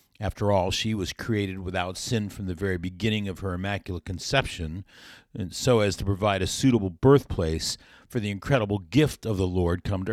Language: English